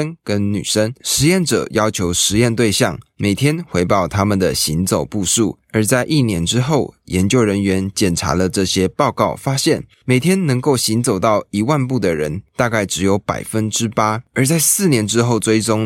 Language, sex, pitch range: Chinese, male, 95-130 Hz